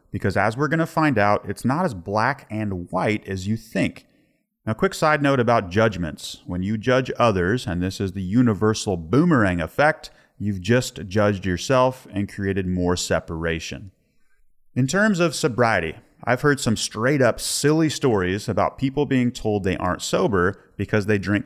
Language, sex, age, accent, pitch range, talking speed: English, male, 30-49, American, 95-135 Hz, 175 wpm